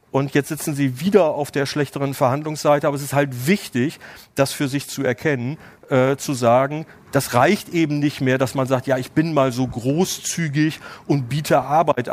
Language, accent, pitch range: German, German, 130-160 Hz